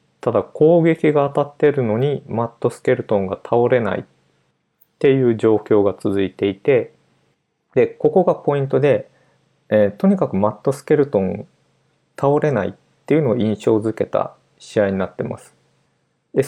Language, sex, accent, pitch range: Japanese, male, native, 105-145 Hz